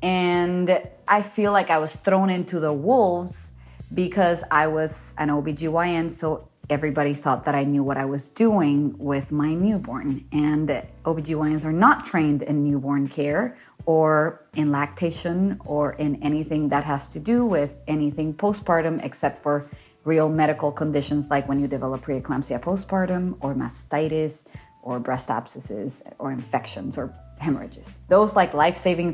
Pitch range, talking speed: 145-180 Hz, 150 wpm